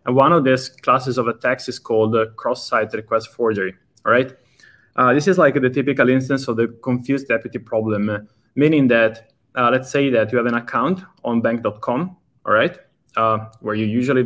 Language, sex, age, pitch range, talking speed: English, male, 20-39, 115-135 Hz, 190 wpm